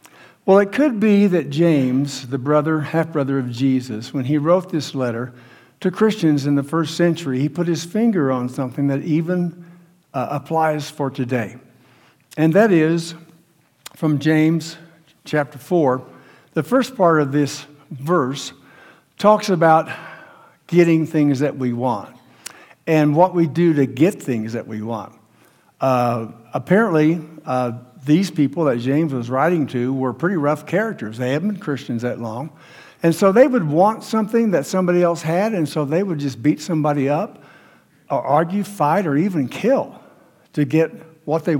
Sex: male